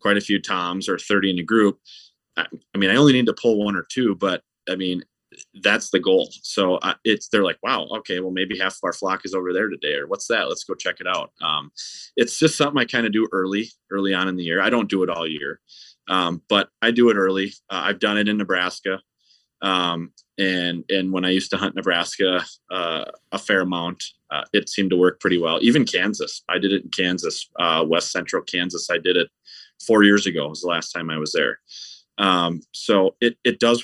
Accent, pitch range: American, 90-110 Hz